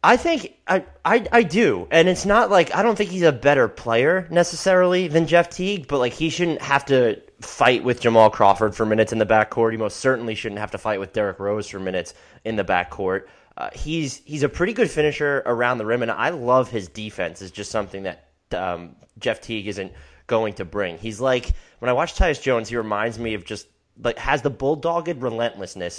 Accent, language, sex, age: American, English, male, 30-49